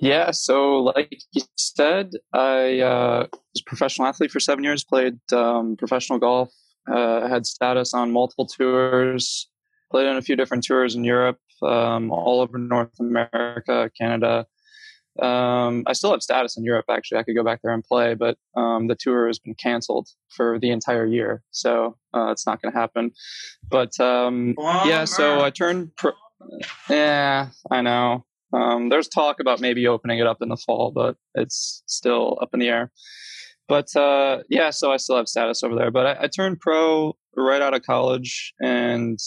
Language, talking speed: English, 180 wpm